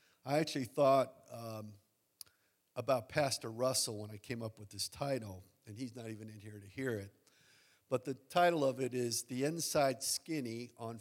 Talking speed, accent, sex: 180 wpm, American, male